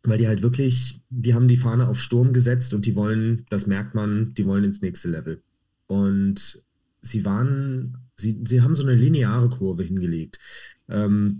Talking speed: 180 wpm